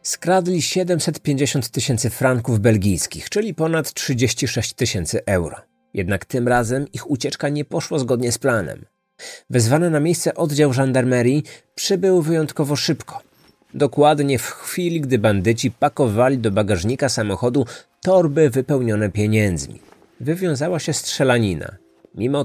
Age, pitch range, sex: 30-49, 115-155 Hz, male